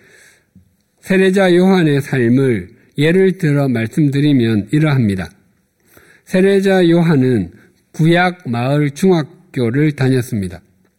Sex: male